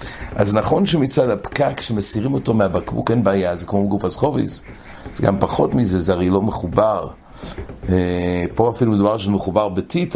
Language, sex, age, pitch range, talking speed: English, male, 60-79, 95-125 Hz, 155 wpm